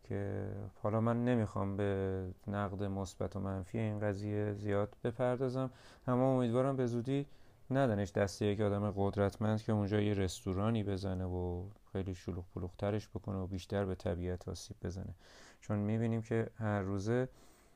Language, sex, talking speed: Persian, male, 145 wpm